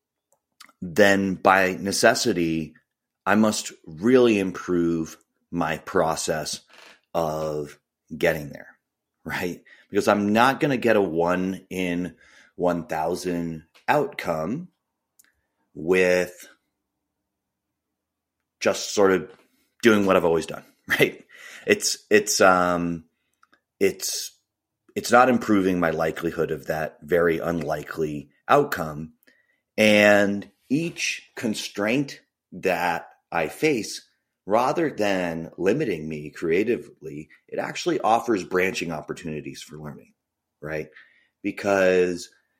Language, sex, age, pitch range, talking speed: English, male, 30-49, 80-100 Hz, 95 wpm